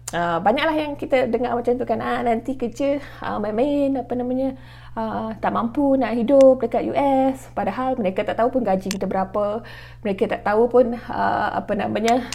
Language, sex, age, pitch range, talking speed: Malay, female, 20-39, 180-230 Hz, 180 wpm